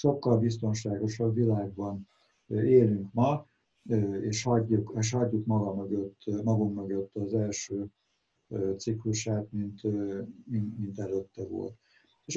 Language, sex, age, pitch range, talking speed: Hungarian, male, 60-79, 110-150 Hz, 105 wpm